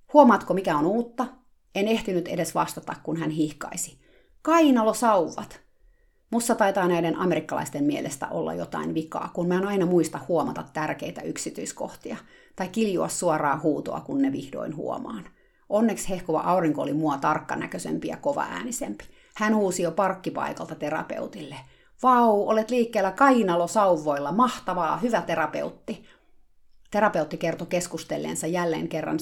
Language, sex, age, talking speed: Finnish, female, 30-49, 125 wpm